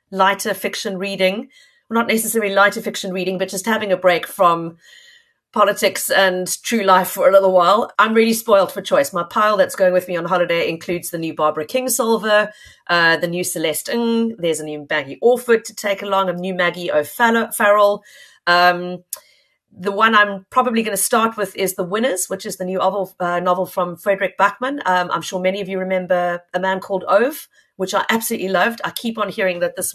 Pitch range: 180-235 Hz